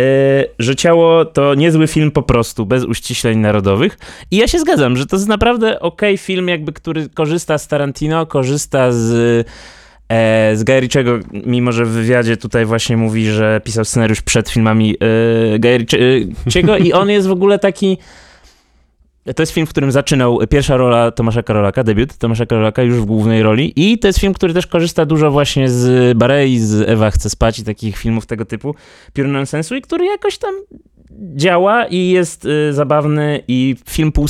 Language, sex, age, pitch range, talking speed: Polish, male, 20-39, 110-140 Hz, 180 wpm